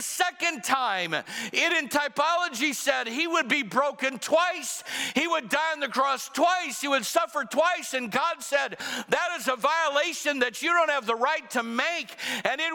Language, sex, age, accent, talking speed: English, male, 60-79, American, 185 wpm